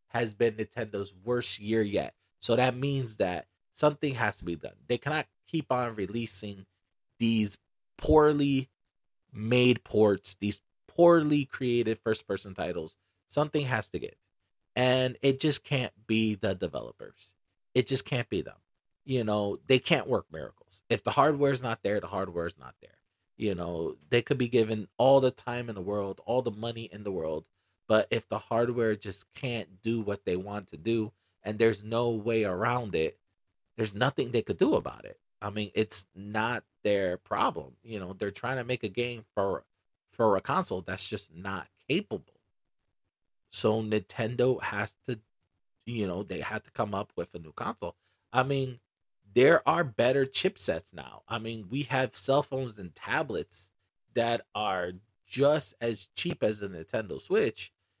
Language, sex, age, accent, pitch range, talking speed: English, male, 30-49, American, 100-125 Hz, 175 wpm